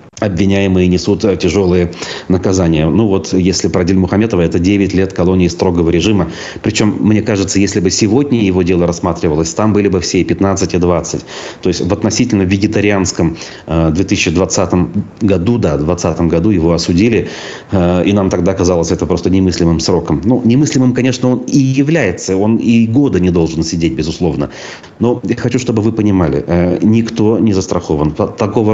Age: 30-49